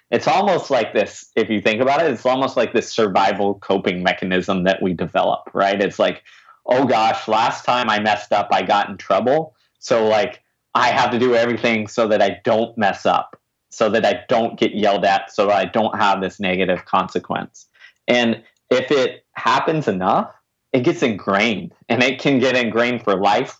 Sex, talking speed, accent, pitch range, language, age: male, 190 wpm, American, 100-115 Hz, English, 30-49